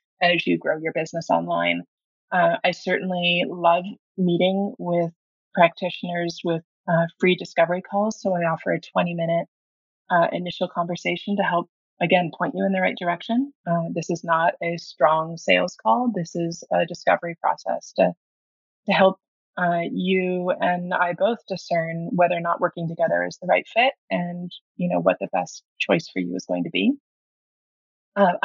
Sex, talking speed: female, 170 wpm